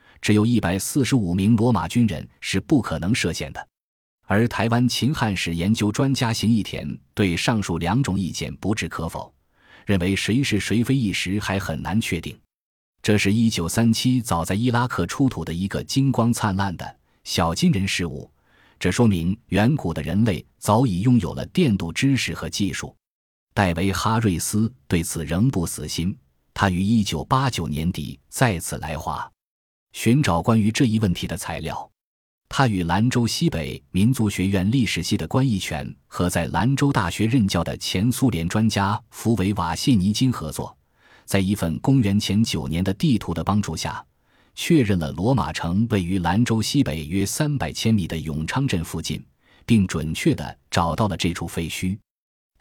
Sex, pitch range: male, 85-115 Hz